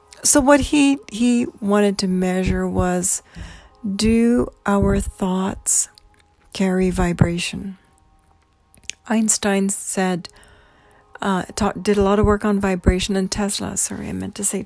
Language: English